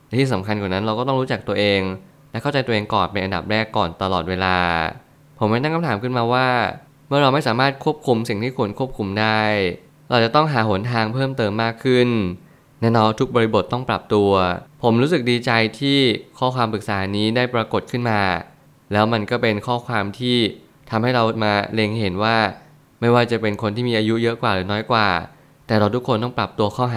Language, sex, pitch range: Thai, male, 105-125 Hz